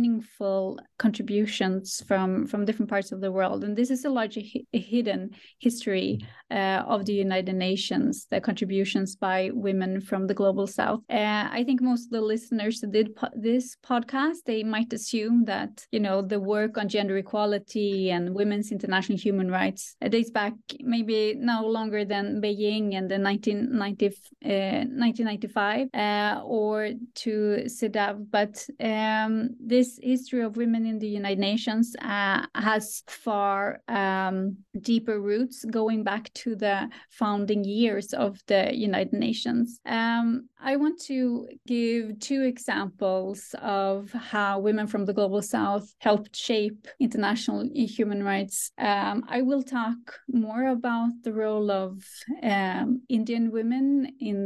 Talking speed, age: 145 wpm, 20-39